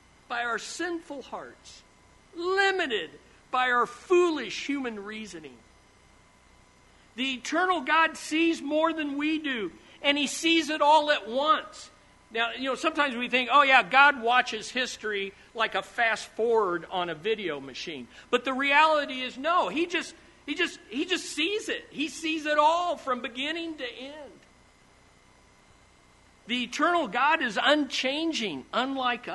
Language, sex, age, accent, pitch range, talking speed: English, male, 50-69, American, 225-310 Hz, 140 wpm